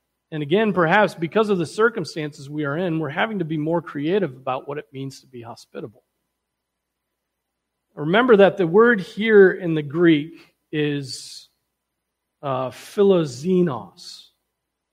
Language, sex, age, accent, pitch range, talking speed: English, male, 40-59, American, 145-185 Hz, 135 wpm